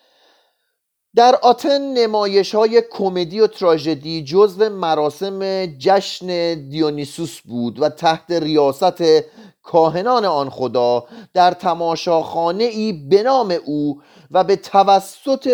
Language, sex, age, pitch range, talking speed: Persian, male, 30-49, 165-210 Hz, 95 wpm